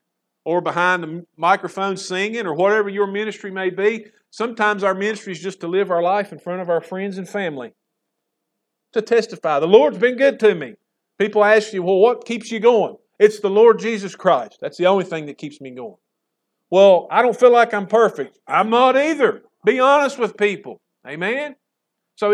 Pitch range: 170-210 Hz